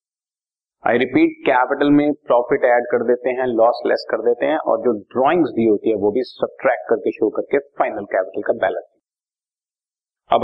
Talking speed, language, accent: 180 wpm, Hindi, native